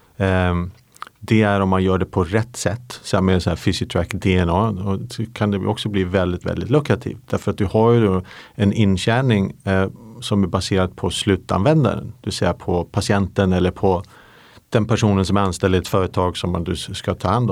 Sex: male